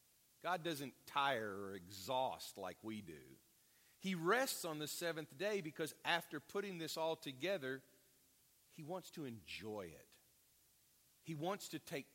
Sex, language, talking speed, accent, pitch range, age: male, English, 145 wpm, American, 130-180 Hz, 50-69